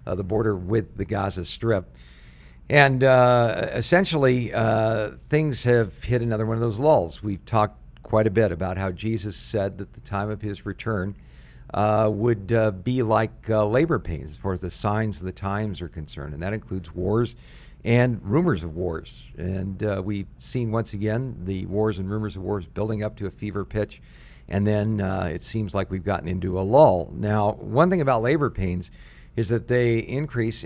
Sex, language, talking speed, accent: male, English, 195 wpm, American